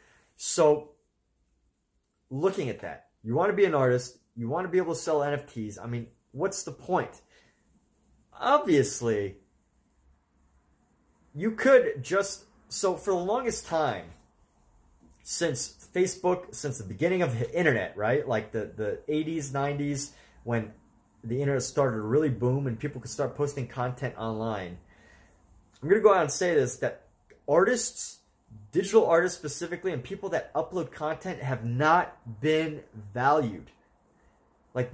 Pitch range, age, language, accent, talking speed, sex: 115-165 Hz, 30-49, English, American, 145 wpm, male